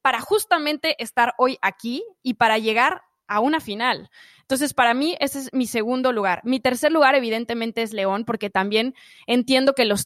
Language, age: Spanish, 20-39